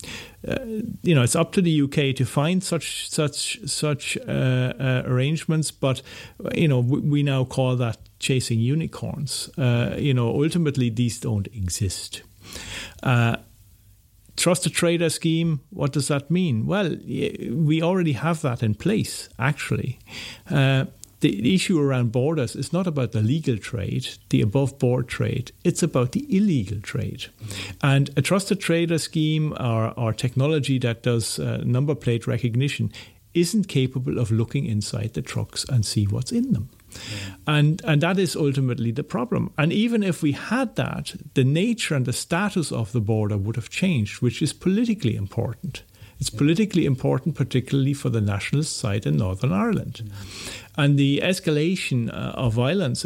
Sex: male